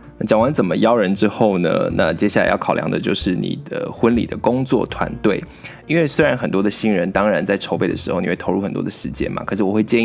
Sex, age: male, 20-39